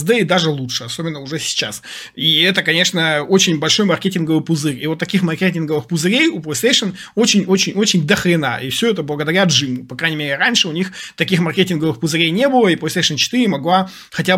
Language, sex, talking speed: Russian, male, 180 wpm